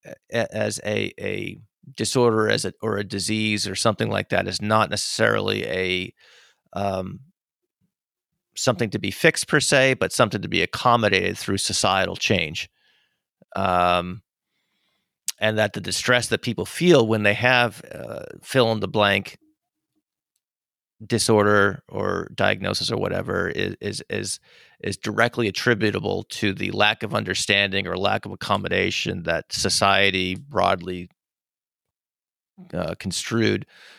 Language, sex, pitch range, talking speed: English, male, 100-115 Hz, 130 wpm